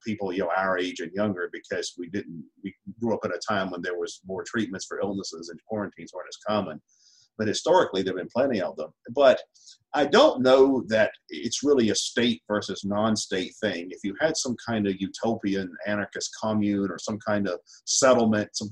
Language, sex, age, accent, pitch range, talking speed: English, male, 50-69, American, 95-110 Hz, 200 wpm